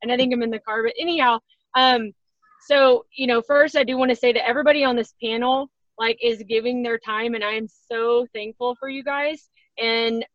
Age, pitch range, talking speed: 20-39, 215-255 Hz, 215 wpm